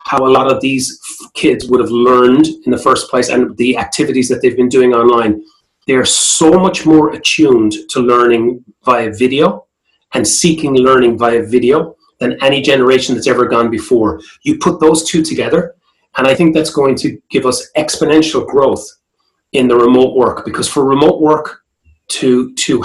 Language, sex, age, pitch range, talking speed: English, male, 30-49, 120-155 Hz, 175 wpm